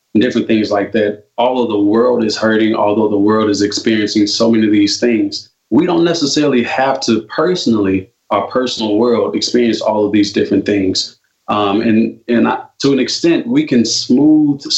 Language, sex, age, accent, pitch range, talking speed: English, male, 20-39, American, 105-120 Hz, 185 wpm